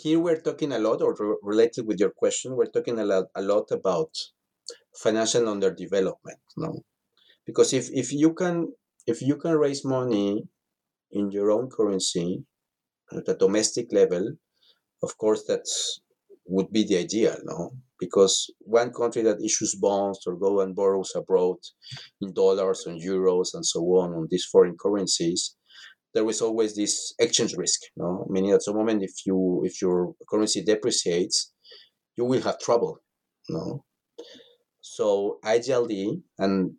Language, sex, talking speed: English, male, 160 wpm